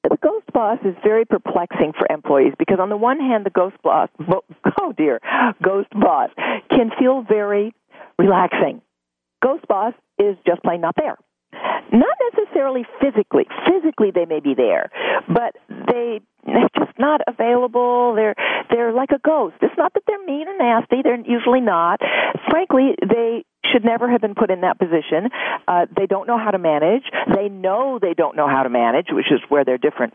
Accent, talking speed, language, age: American, 170 wpm, English, 50-69